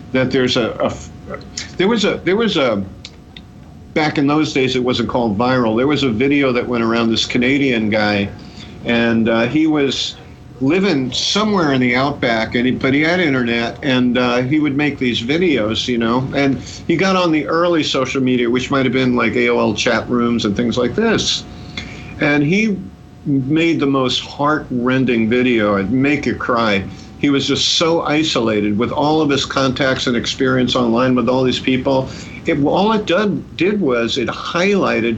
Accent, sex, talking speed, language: American, male, 185 wpm, English